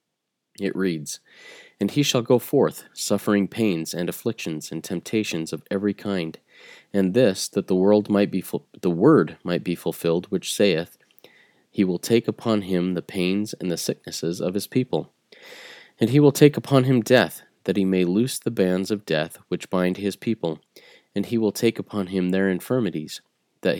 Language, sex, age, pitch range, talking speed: English, male, 30-49, 90-115 Hz, 180 wpm